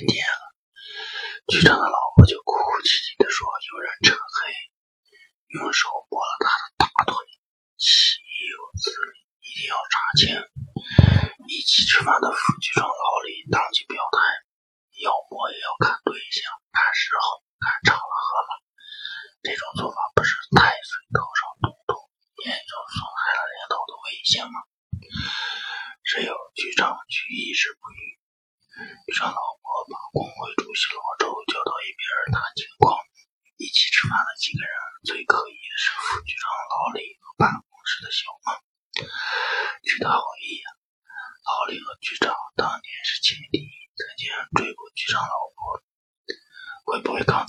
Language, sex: Chinese, male